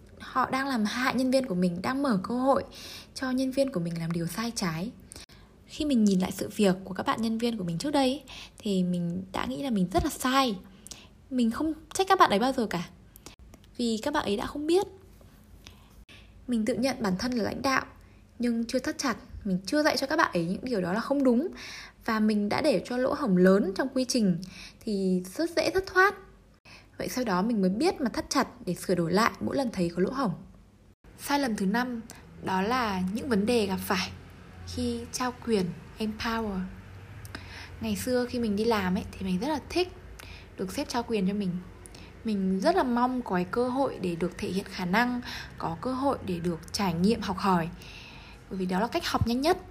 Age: 10-29